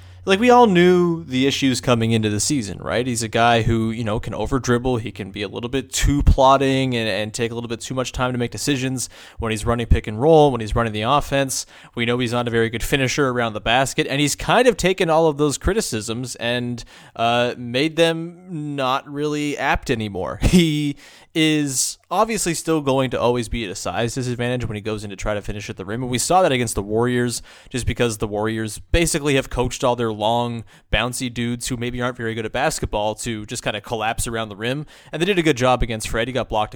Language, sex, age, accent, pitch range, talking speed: English, male, 20-39, American, 115-140 Hz, 240 wpm